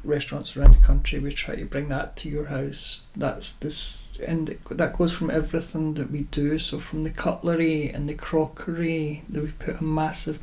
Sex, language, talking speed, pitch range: male, English, 195 wpm, 145-175 Hz